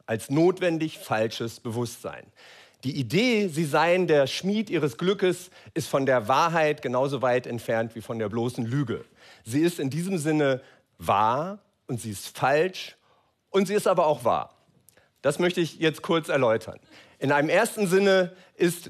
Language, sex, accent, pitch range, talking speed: German, male, German, 130-160 Hz, 160 wpm